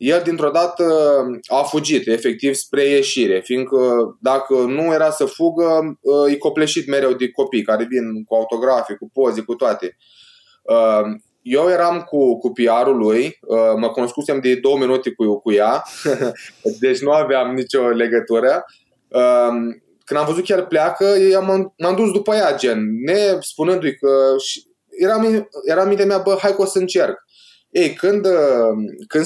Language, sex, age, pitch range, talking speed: Romanian, male, 20-39, 130-185 Hz, 150 wpm